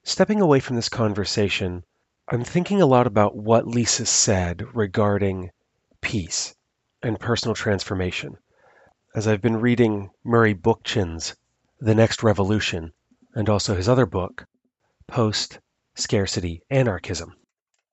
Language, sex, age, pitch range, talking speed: English, male, 30-49, 100-120 Hz, 115 wpm